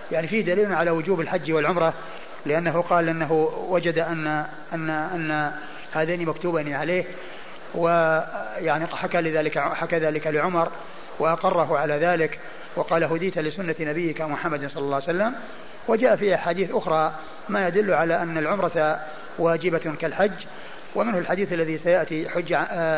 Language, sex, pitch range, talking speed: Arabic, male, 160-185 Hz, 135 wpm